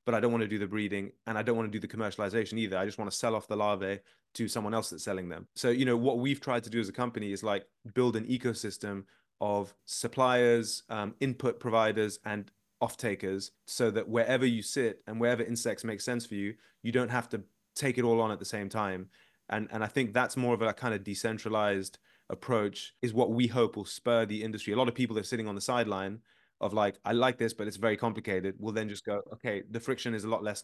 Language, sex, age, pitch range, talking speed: English, male, 20-39, 100-115 Hz, 250 wpm